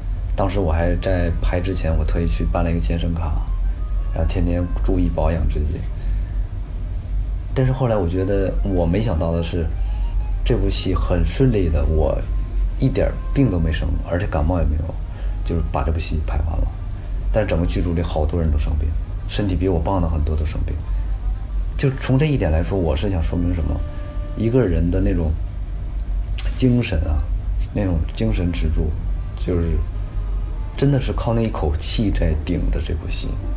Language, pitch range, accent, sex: Chinese, 85-100 Hz, native, male